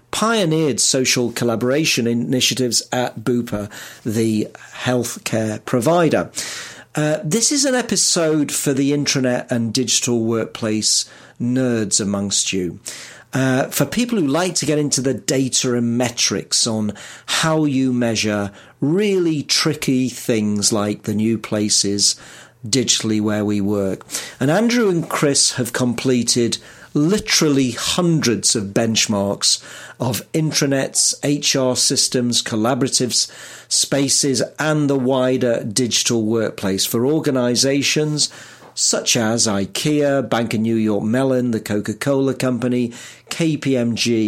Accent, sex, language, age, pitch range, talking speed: British, male, English, 40-59, 115-145 Hz, 115 wpm